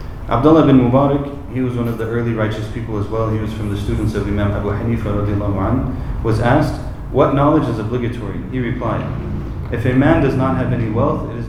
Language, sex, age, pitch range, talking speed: English, male, 30-49, 100-120 Hz, 210 wpm